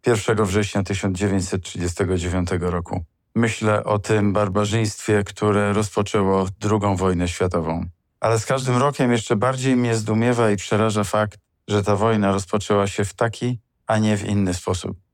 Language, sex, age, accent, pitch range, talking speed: Polish, male, 50-69, native, 95-110 Hz, 145 wpm